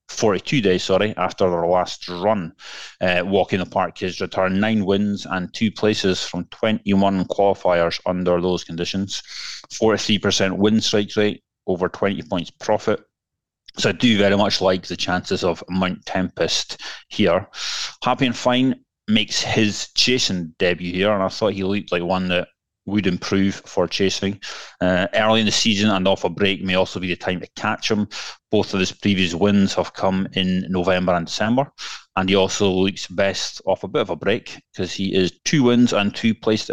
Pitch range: 95-105 Hz